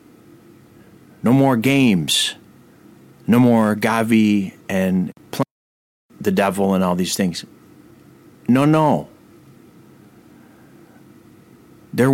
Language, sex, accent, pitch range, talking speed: English, male, American, 100-145 Hz, 80 wpm